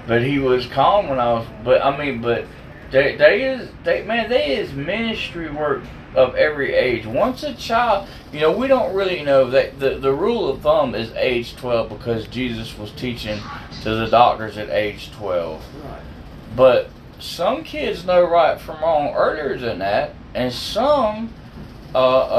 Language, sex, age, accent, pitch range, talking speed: English, male, 20-39, American, 125-175 Hz, 170 wpm